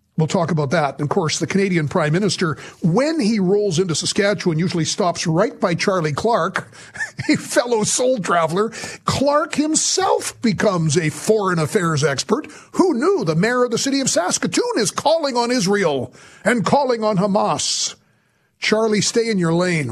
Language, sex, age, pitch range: English, male, 50-69, 155-205 Hz